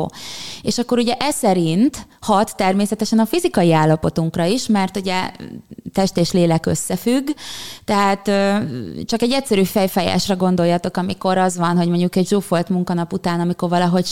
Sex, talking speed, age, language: female, 145 wpm, 20-39, Hungarian